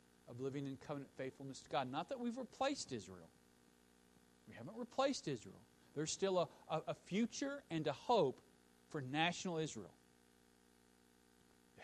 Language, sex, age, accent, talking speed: English, male, 40-59, American, 145 wpm